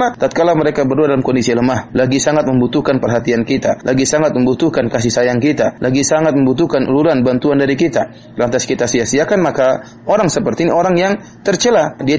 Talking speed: 170 wpm